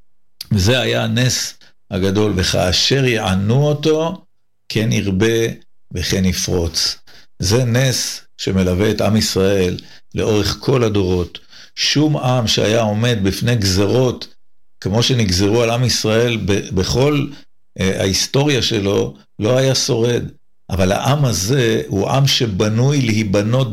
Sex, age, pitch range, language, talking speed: male, 50-69, 95-120 Hz, Hebrew, 110 wpm